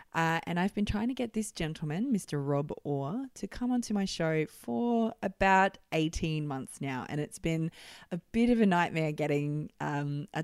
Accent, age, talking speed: Australian, 20-39, 190 wpm